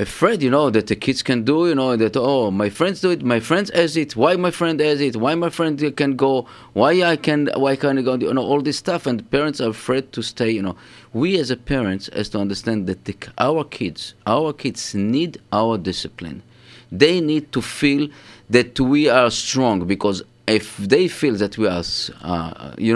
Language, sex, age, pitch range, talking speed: English, male, 30-49, 105-145 Hz, 215 wpm